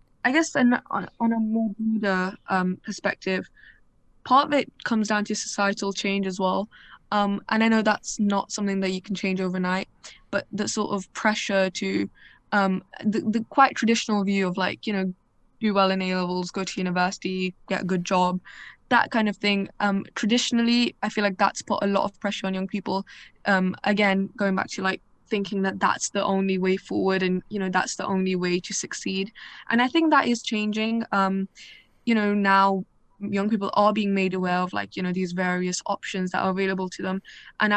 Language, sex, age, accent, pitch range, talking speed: English, female, 10-29, British, 190-215 Hz, 200 wpm